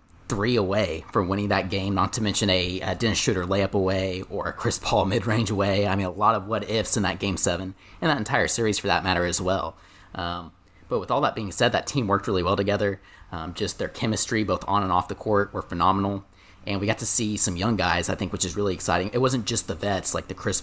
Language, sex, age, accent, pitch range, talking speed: English, male, 30-49, American, 90-105 Hz, 255 wpm